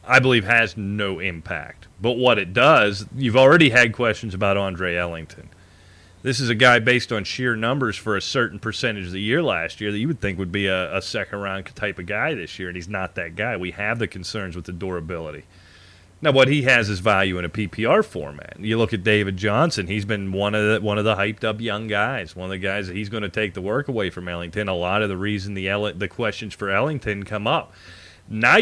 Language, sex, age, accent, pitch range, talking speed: English, male, 30-49, American, 95-125 Hz, 230 wpm